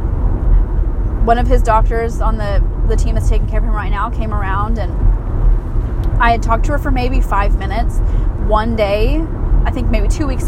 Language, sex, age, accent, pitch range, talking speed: English, female, 20-39, American, 95-110 Hz, 195 wpm